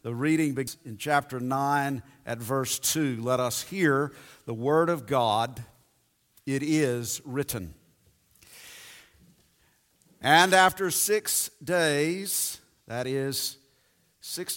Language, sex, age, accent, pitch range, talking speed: English, male, 50-69, American, 130-180 Hz, 105 wpm